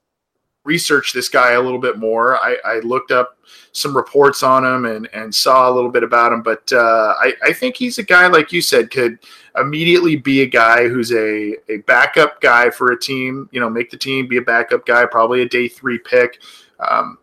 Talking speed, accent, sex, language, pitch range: 215 wpm, American, male, English, 115-140 Hz